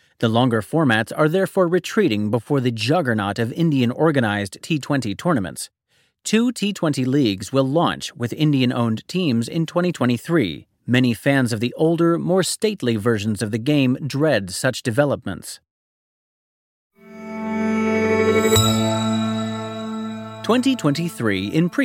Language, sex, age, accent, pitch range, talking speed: English, male, 30-49, American, 115-185 Hz, 105 wpm